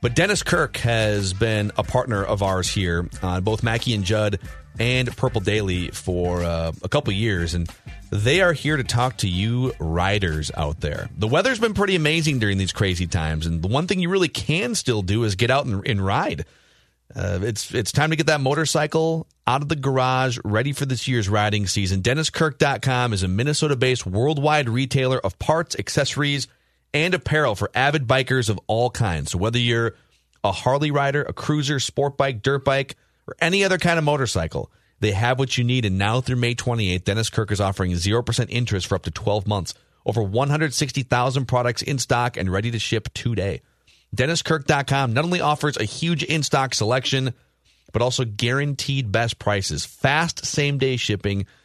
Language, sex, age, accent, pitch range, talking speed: English, male, 30-49, American, 100-140 Hz, 185 wpm